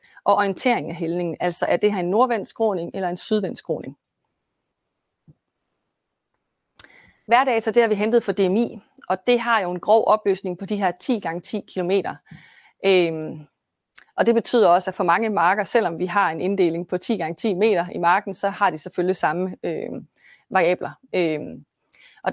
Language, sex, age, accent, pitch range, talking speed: Danish, female, 30-49, native, 175-215 Hz, 170 wpm